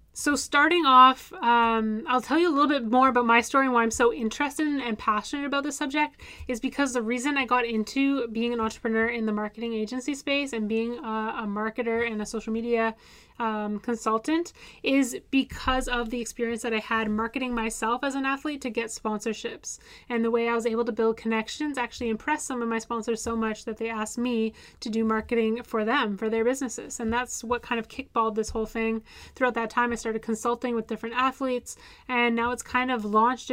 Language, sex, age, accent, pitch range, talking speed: English, female, 10-29, American, 225-250 Hz, 215 wpm